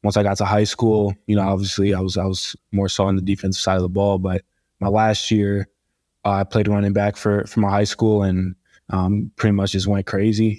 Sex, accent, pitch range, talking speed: male, American, 100-110 Hz, 245 wpm